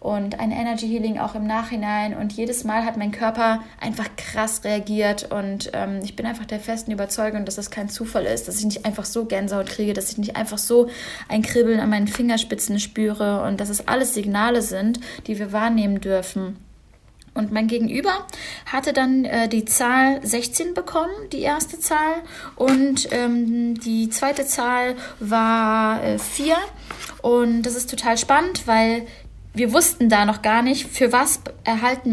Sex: female